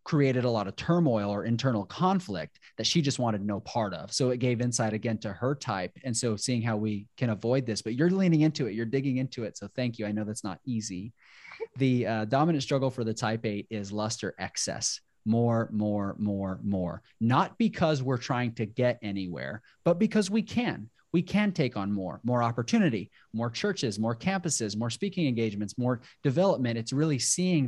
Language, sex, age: English, male, 30-49